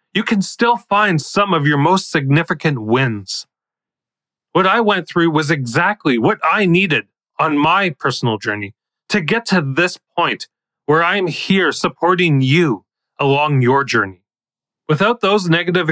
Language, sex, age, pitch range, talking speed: English, male, 30-49, 130-185 Hz, 145 wpm